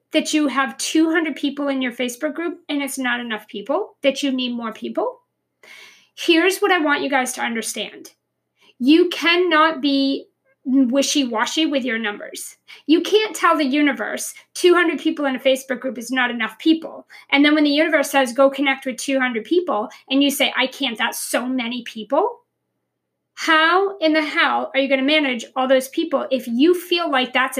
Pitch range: 255-310 Hz